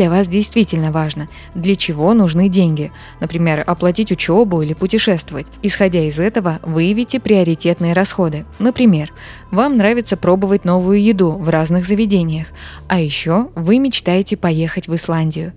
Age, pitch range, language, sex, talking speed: 20-39, 160-200 Hz, Russian, female, 135 wpm